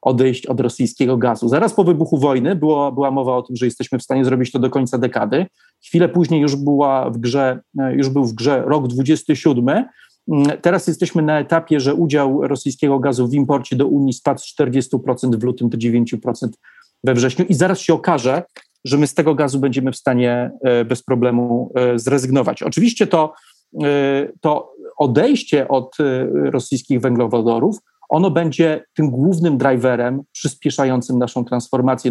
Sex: male